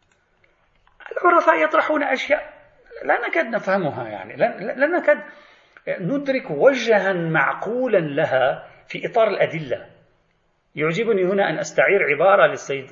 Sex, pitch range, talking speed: male, 150-255 Hz, 100 wpm